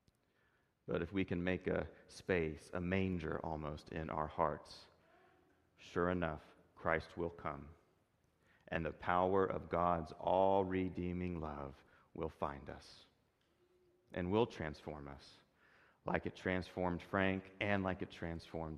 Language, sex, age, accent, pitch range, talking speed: English, male, 30-49, American, 80-95 Hz, 130 wpm